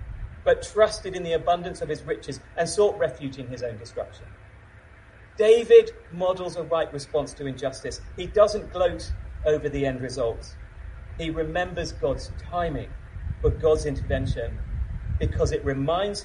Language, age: English, 40-59